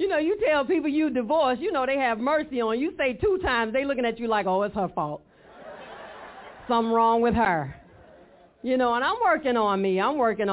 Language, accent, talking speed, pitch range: English, American, 230 wpm, 205-275 Hz